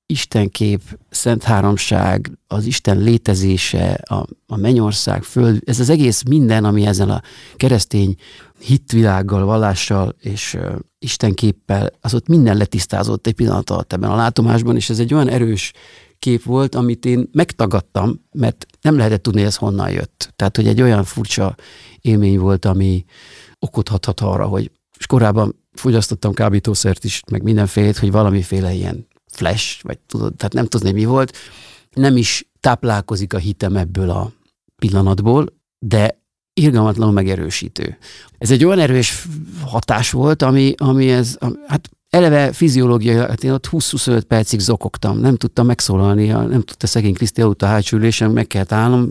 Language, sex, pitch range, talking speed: Hungarian, male, 100-125 Hz, 150 wpm